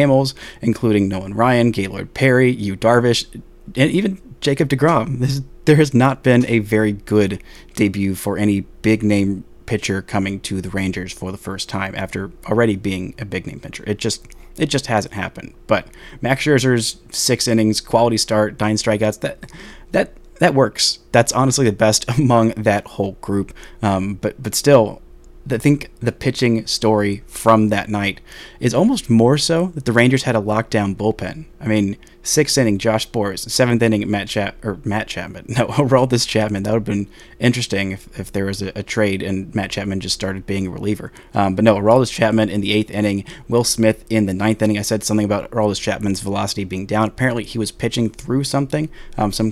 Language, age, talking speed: English, 30-49, 190 wpm